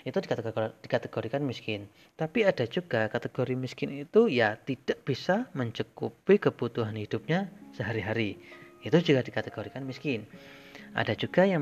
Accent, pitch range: native, 110-150 Hz